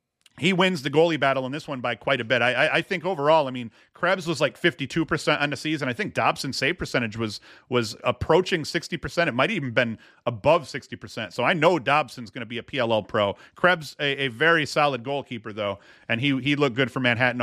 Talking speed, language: 225 wpm, English